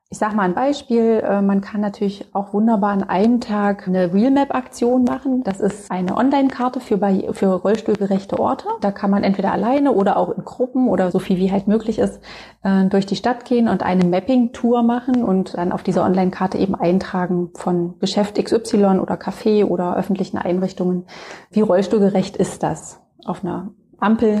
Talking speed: 175 wpm